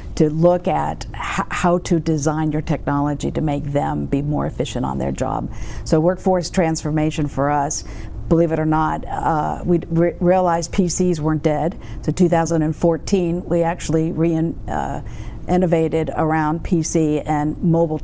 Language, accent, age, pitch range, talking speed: English, American, 50-69, 145-170 Hz, 145 wpm